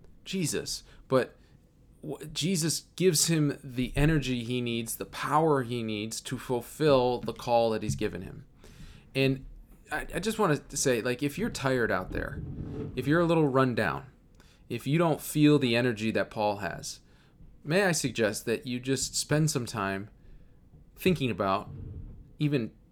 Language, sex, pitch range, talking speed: English, male, 110-135 Hz, 160 wpm